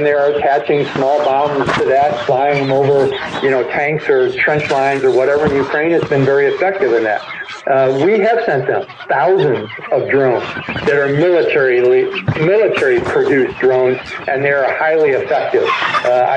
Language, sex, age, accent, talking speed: English, male, 60-79, American, 160 wpm